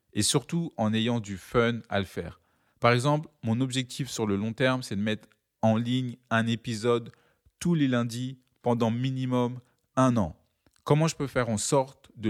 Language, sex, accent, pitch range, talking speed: French, male, French, 115-135 Hz, 185 wpm